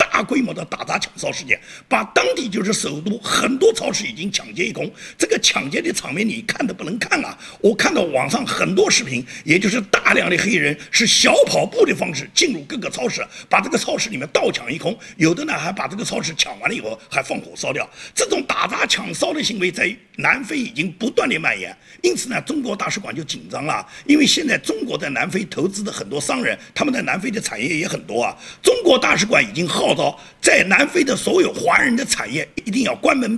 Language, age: Chinese, 50-69